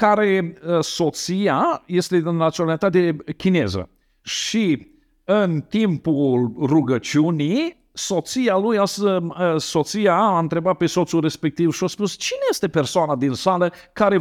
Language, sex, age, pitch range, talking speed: Romanian, male, 50-69, 155-210 Hz, 120 wpm